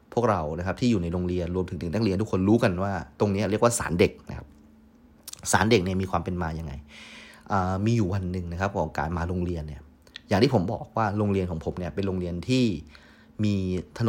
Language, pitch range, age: Thai, 85-105 Hz, 30-49